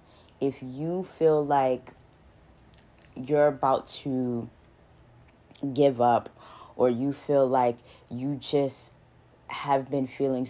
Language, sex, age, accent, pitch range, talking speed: English, female, 10-29, American, 125-140 Hz, 105 wpm